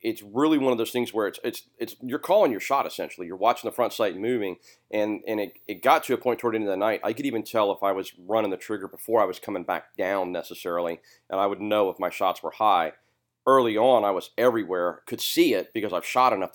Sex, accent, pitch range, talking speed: male, American, 95-115 Hz, 265 wpm